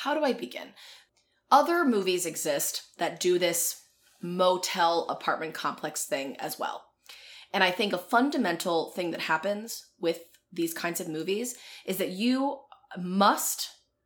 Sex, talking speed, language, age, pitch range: female, 140 wpm, English, 20-39, 170-245 Hz